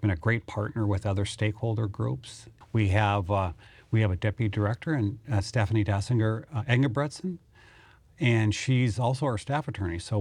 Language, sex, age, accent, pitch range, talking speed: English, male, 40-59, American, 100-120 Hz, 170 wpm